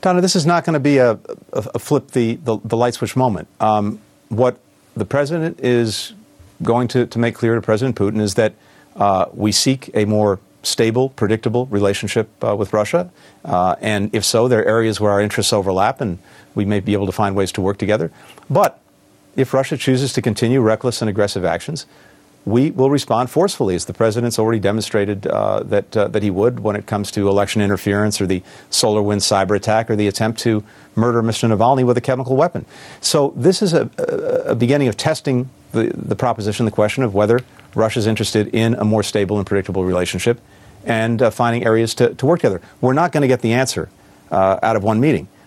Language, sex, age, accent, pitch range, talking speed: English, male, 50-69, American, 105-125 Hz, 205 wpm